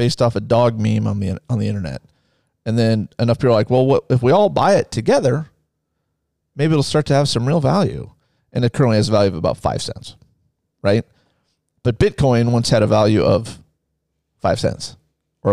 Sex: male